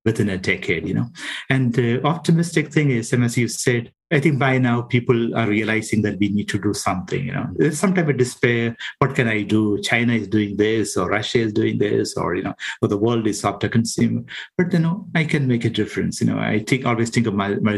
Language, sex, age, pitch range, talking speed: English, male, 50-69, 105-130 Hz, 250 wpm